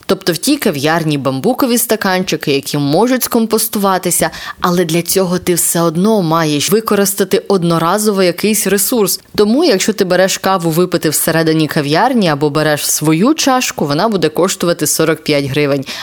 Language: Ukrainian